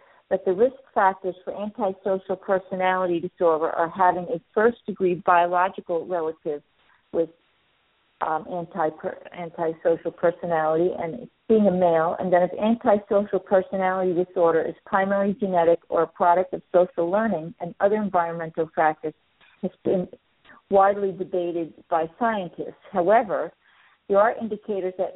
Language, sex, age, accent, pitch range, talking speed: English, female, 50-69, American, 170-195 Hz, 125 wpm